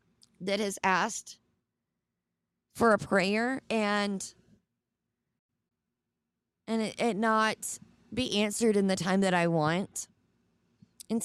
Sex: female